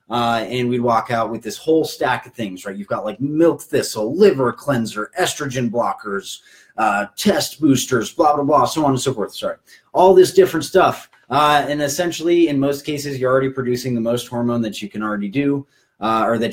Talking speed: 205 wpm